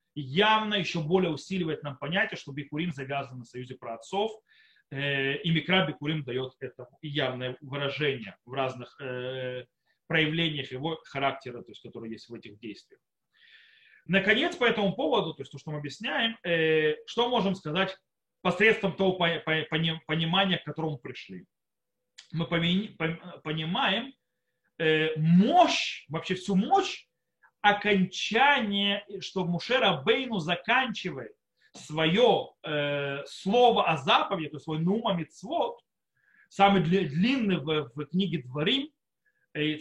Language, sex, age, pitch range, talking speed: Russian, male, 30-49, 155-215 Hz, 115 wpm